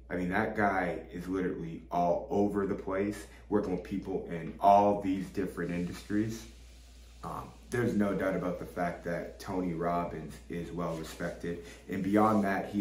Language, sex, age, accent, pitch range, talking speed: English, male, 30-49, American, 90-105 Hz, 160 wpm